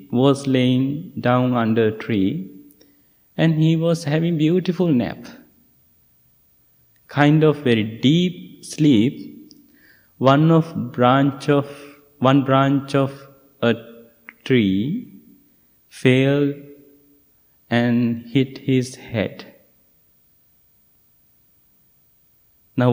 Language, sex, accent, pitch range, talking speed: English, male, Indian, 115-140 Hz, 85 wpm